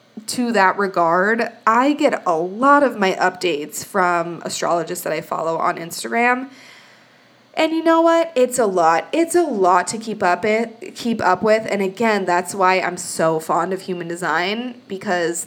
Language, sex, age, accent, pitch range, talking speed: English, female, 20-39, American, 180-225 Hz, 175 wpm